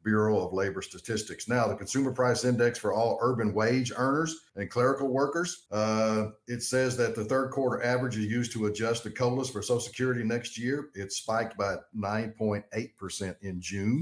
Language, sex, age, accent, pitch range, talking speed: English, male, 50-69, American, 100-125 Hz, 180 wpm